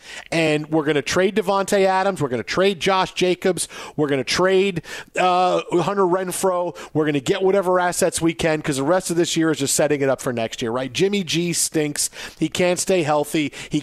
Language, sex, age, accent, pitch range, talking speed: English, male, 40-59, American, 155-190 Hz, 215 wpm